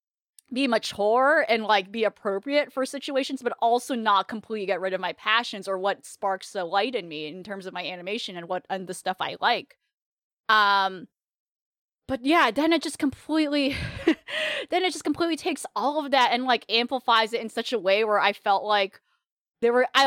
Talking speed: 195 wpm